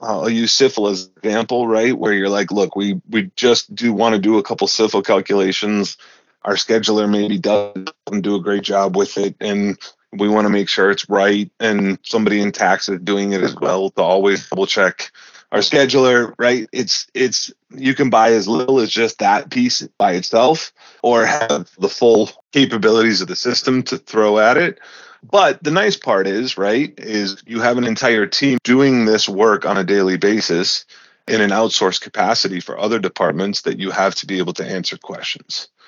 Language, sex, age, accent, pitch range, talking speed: English, male, 30-49, American, 100-120 Hz, 195 wpm